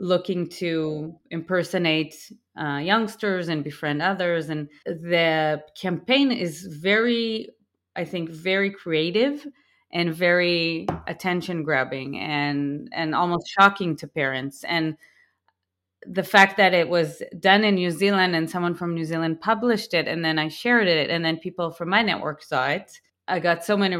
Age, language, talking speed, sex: 30-49, English, 155 wpm, female